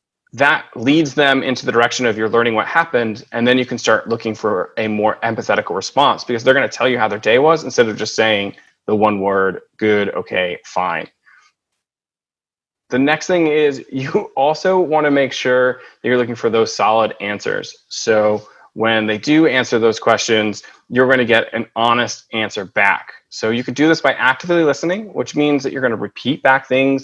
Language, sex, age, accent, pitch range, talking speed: English, male, 20-39, American, 110-145 Hz, 200 wpm